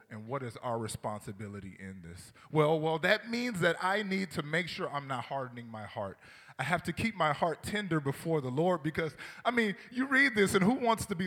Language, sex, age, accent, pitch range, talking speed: English, male, 20-39, American, 105-145 Hz, 230 wpm